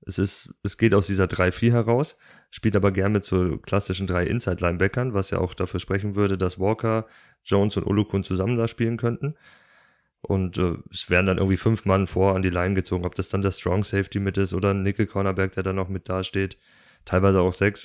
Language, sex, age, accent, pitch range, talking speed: German, male, 30-49, German, 95-105 Hz, 210 wpm